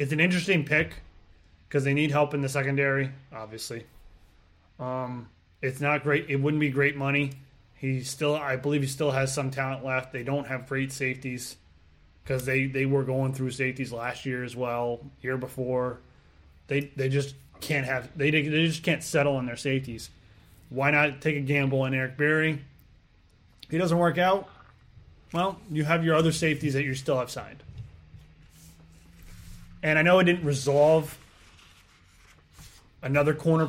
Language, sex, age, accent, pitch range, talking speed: English, male, 20-39, American, 110-145 Hz, 165 wpm